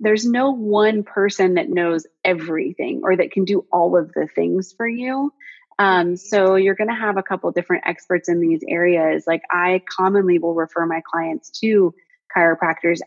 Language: English